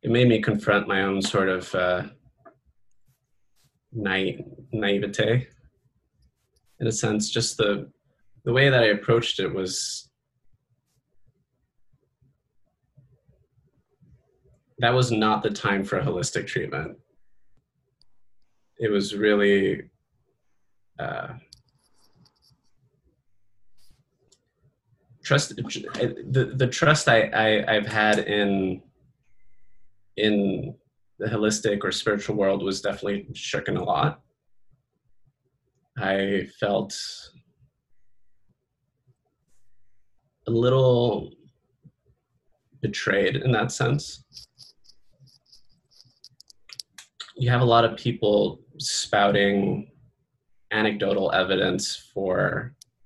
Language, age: English, 20-39